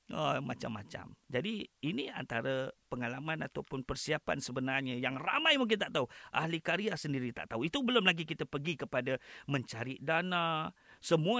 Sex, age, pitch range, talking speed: male, 40-59, 130-190 Hz, 145 wpm